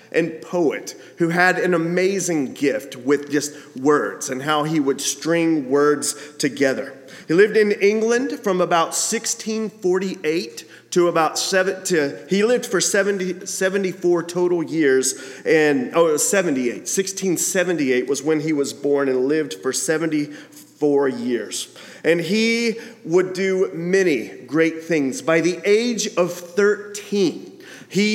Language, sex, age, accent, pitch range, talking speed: English, male, 30-49, American, 150-195 Hz, 130 wpm